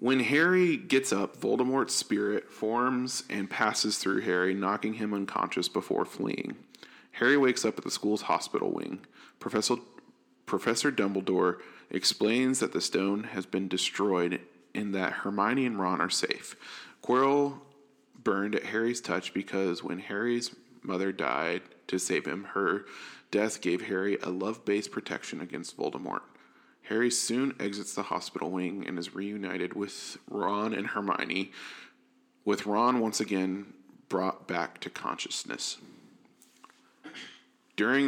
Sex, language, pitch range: male, English, 95-120 Hz